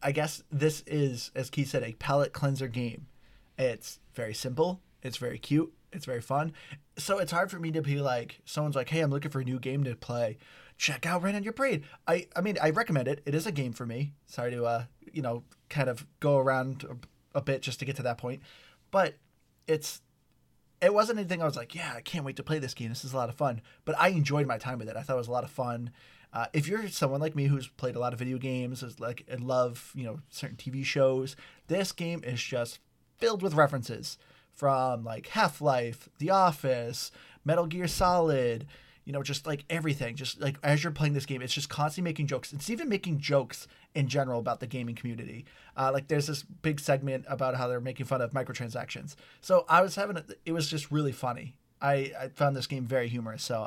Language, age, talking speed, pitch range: English, 20-39, 230 wpm, 125-155 Hz